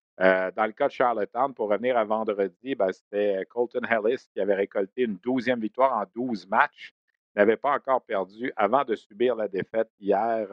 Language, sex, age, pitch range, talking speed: French, male, 50-69, 105-135 Hz, 195 wpm